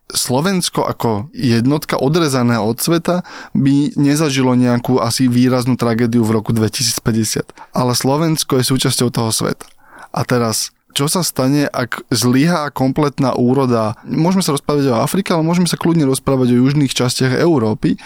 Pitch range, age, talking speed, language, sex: 125-145 Hz, 20-39, 145 wpm, Slovak, male